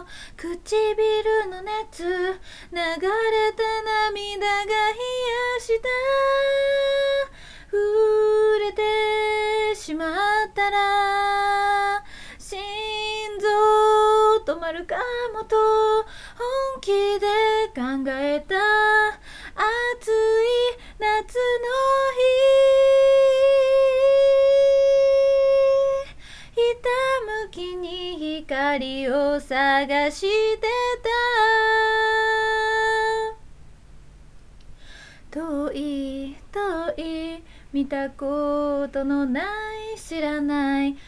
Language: Japanese